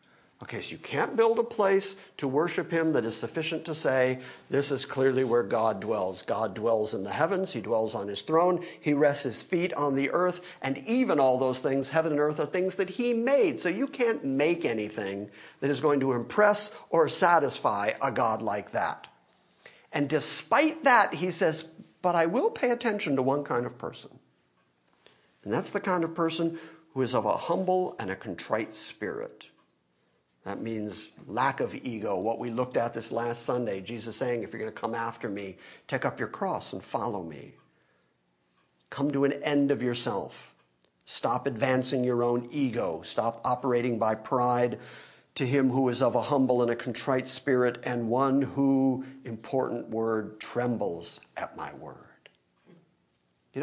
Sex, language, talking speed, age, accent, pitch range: male, English, 180 wpm, 50-69, American, 115-165 Hz